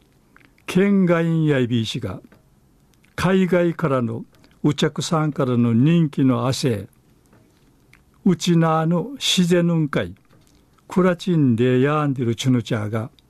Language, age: Japanese, 60-79